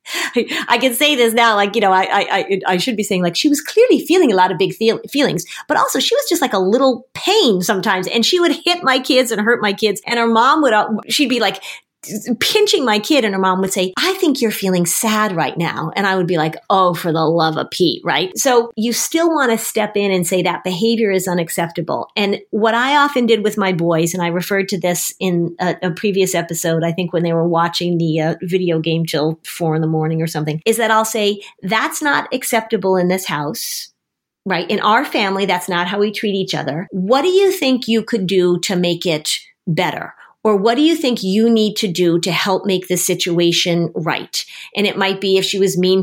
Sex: female